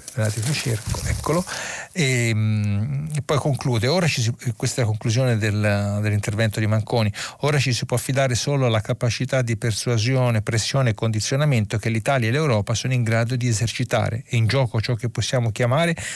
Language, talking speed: Italian, 165 wpm